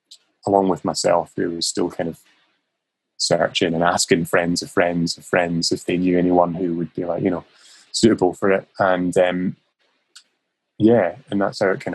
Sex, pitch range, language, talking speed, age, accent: male, 90-105 Hz, English, 185 wpm, 20-39, British